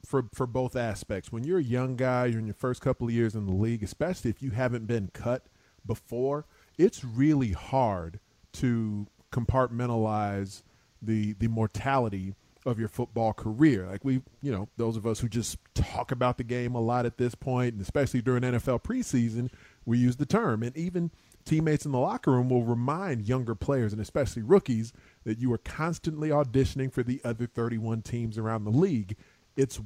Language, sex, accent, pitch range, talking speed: English, male, American, 115-155 Hz, 185 wpm